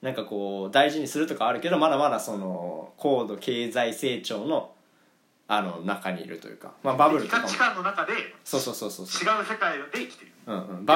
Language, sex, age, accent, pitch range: Japanese, male, 20-39, native, 115-185 Hz